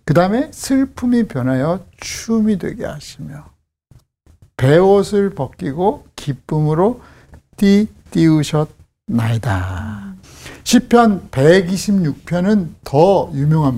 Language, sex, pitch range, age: Korean, male, 125-195 Hz, 60-79